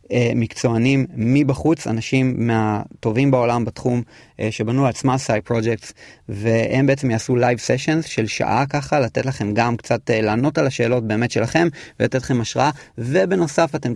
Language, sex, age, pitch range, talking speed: Hebrew, male, 30-49, 115-135 Hz, 140 wpm